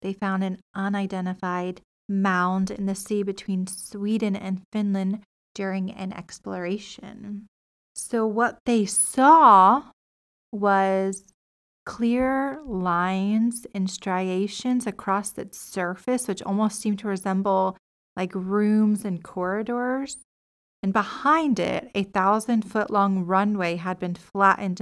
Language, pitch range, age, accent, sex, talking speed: English, 185-215 Hz, 30-49, American, female, 115 wpm